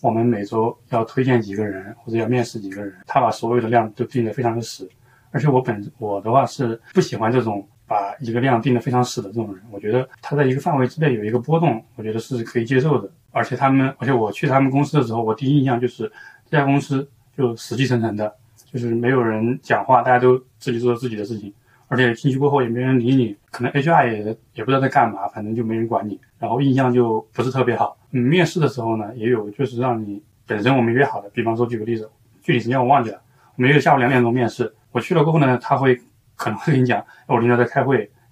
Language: Chinese